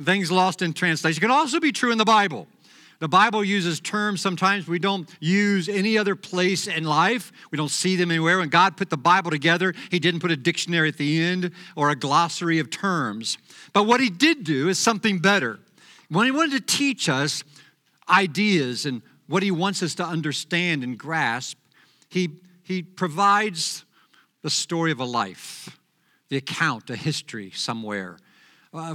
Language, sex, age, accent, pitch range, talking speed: English, male, 50-69, American, 150-195 Hz, 180 wpm